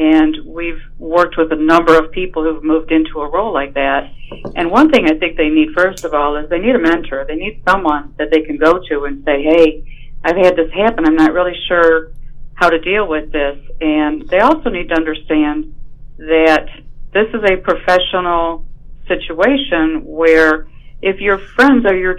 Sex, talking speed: female, 195 wpm